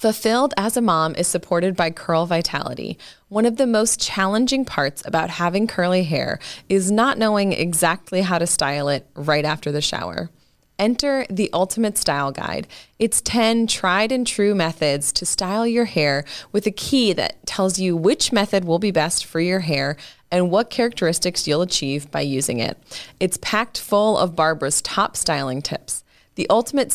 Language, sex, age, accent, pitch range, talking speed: English, female, 20-39, American, 165-220 Hz, 175 wpm